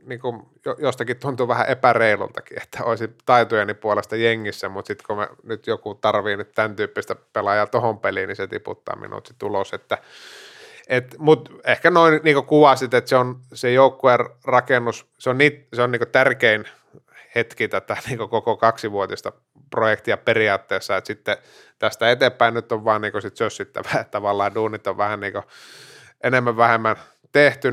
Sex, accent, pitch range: male, native, 110-130 Hz